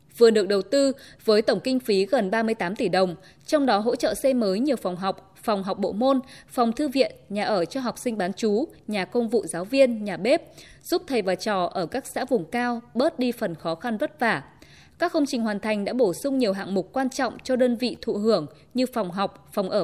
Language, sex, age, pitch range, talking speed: Vietnamese, female, 20-39, 190-260 Hz, 245 wpm